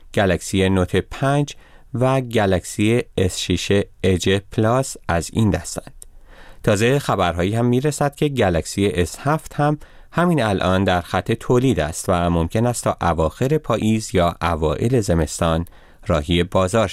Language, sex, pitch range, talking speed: Persian, male, 85-125 Hz, 130 wpm